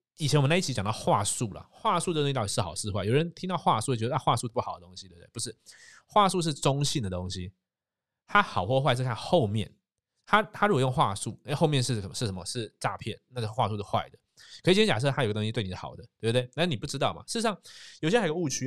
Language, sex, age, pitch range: Chinese, male, 20-39, 100-135 Hz